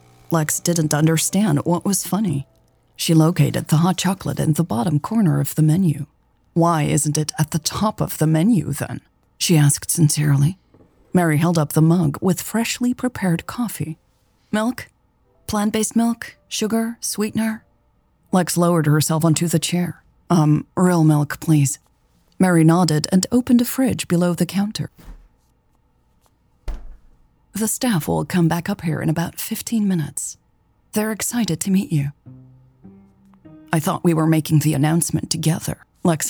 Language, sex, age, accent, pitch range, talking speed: English, female, 30-49, American, 150-185 Hz, 145 wpm